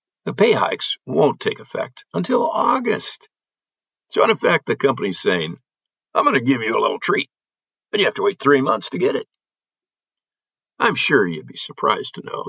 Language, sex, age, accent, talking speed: English, male, 50-69, American, 185 wpm